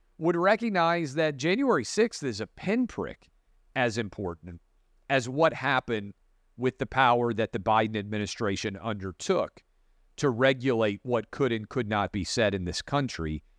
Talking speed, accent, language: 145 wpm, American, English